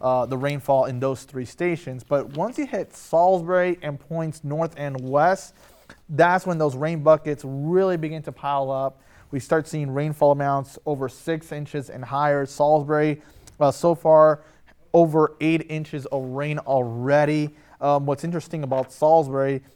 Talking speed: 160 wpm